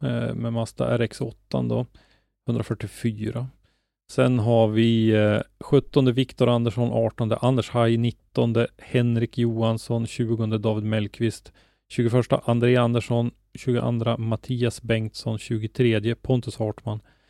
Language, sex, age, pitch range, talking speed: Swedish, male, 30-49, 110-120 Hz, 105 wpm